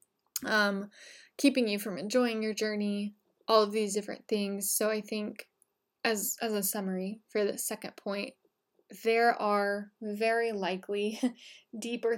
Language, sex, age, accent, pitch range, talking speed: English, female, 10-29, American, 205-240 Hz, 140 wpm